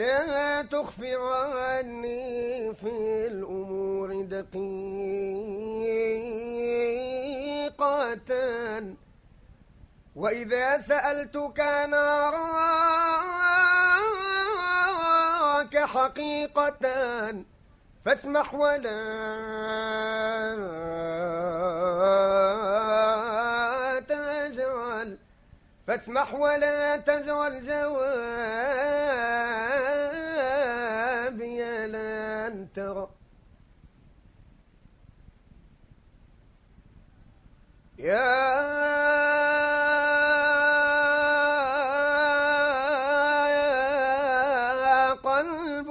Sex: male